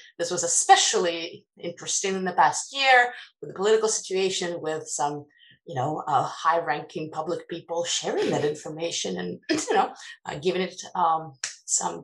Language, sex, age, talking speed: English, female, 30-49, 155 wpm